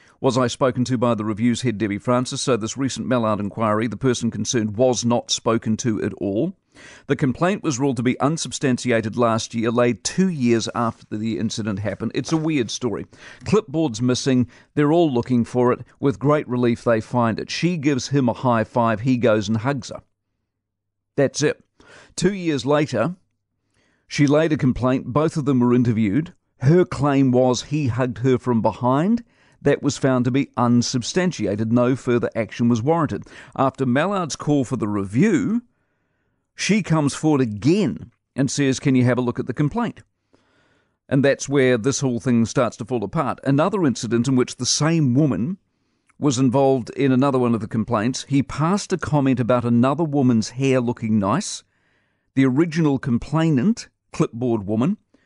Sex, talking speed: male, 175 wpm